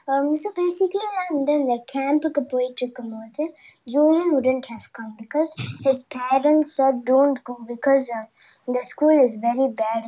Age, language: 20-39, Tamil